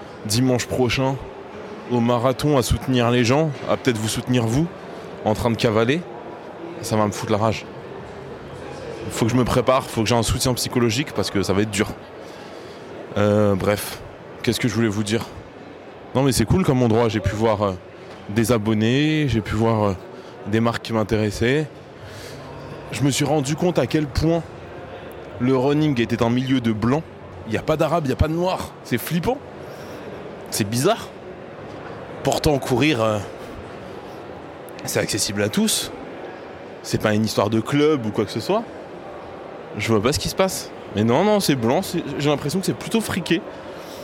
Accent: French